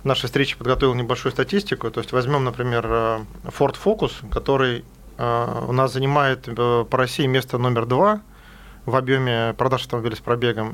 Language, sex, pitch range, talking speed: Russian, male, 120-140 Hz, 145 wpm